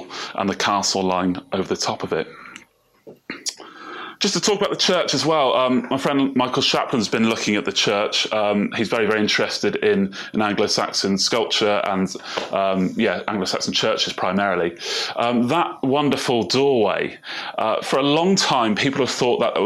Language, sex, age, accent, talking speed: English, male, 30-49, British, 175 wpm